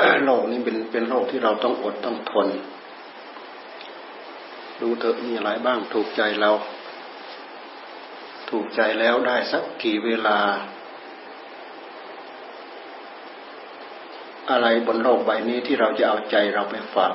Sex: male